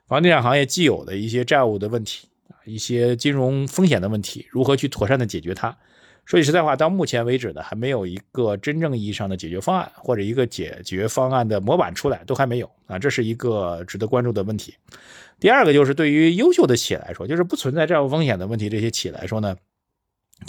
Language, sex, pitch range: Chinese, male, 105-140 Hz